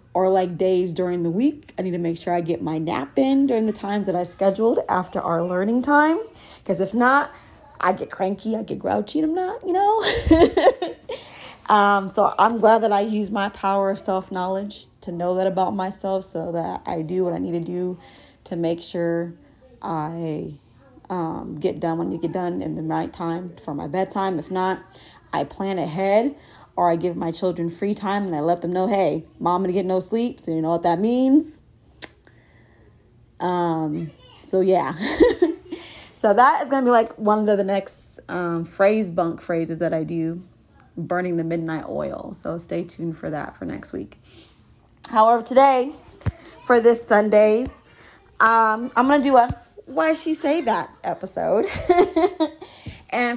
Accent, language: American, English